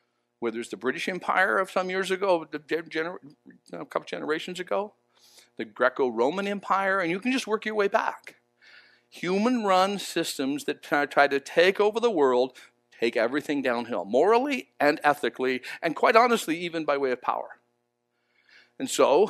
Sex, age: male, 50-69